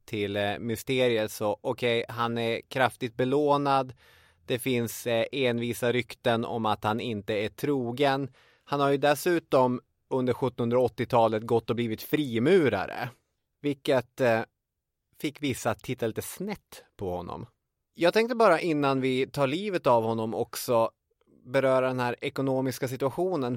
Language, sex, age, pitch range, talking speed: English, male, 20-39, 115-140 Hz, 130 wpm